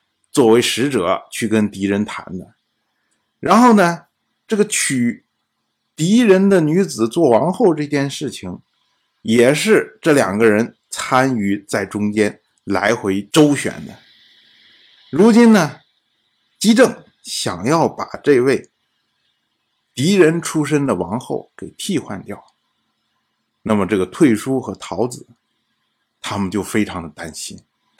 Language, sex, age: Chinese, male, 50-69